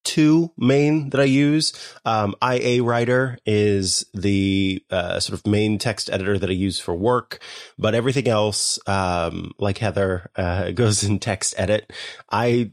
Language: English